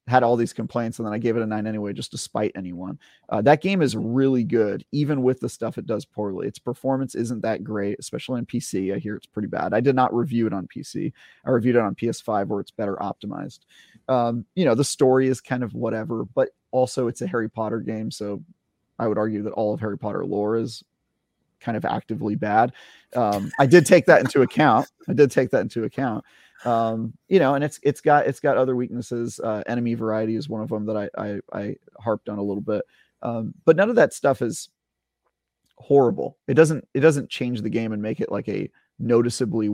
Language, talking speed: English, 225 wpm